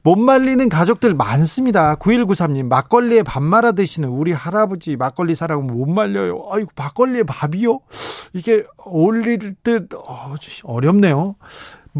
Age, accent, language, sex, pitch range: 40-59, native, Korean, male, 135-195 Hz